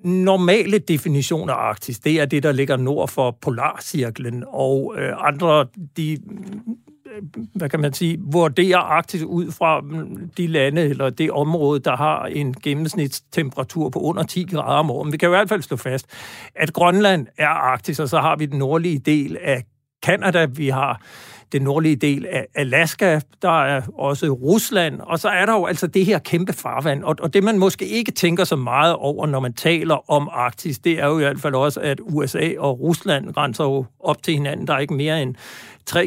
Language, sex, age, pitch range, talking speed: Danish, male, 60-79, 145-175 Hz, 195 wpm